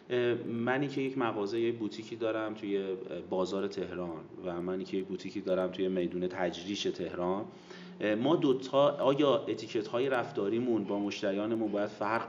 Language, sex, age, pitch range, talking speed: Persian, male, 30-49, 105-130 Hz, 145 wpm